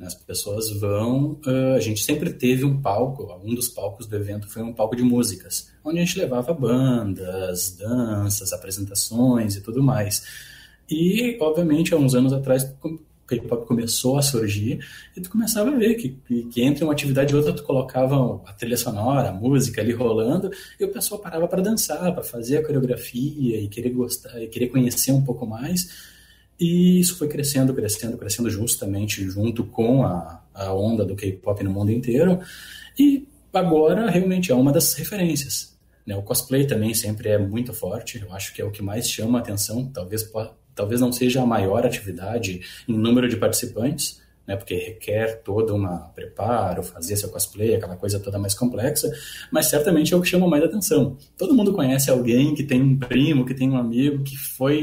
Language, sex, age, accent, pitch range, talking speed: Portuguese, male, 20-39, Brazilian, 105-135 Hz, 185 wpm